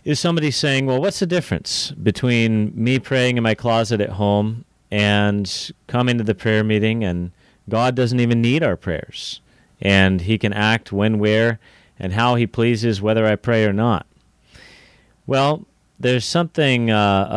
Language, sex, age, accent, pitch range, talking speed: English, male, 30-49, American, 95-115 Hz, 160 wpm